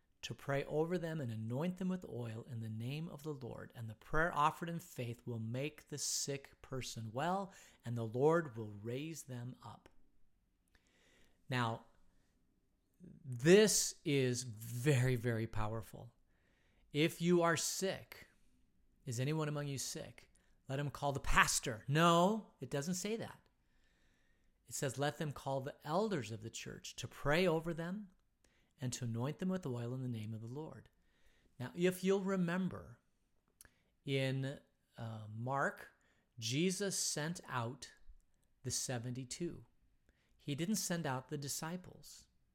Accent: American